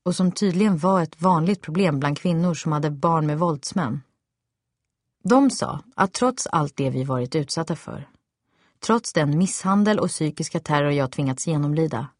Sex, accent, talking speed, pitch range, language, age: female, Swedish, 160 wpm, 145-190 Hz, English, 30-49